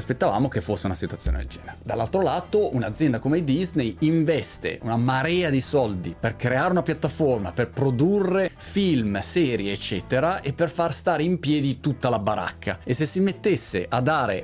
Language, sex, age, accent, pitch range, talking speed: Italian, male, 30-49, native, 110-155 Hz, 170 wpm